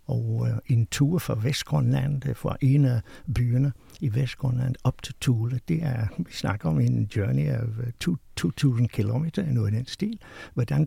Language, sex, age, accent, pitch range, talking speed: Danish, male, 60-79, native, 120-150 Hz, 160 wpm